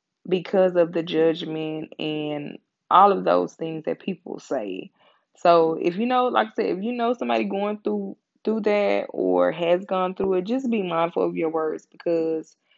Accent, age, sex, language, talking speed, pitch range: American, 20-39, female, English, 185 wpm, 160-195 Hz